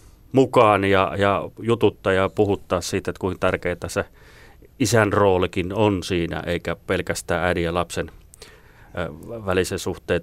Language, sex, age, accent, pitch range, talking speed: Finnish, male, 30-49, native, 90-105 Hz, 125 wpm